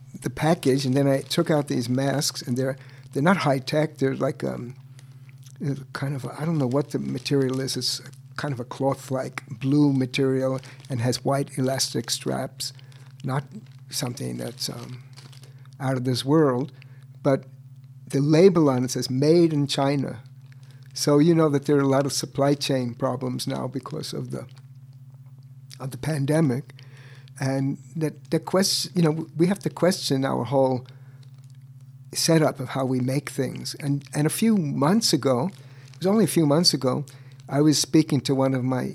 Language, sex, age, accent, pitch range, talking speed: English, male, 60-79, American, 130-150 Hz, 175 wpm